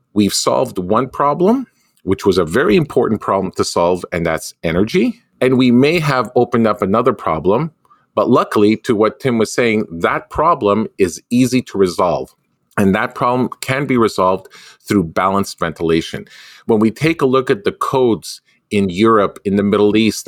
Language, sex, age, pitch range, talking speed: English, male, 40-59, 100-130 Hz, 175 wpm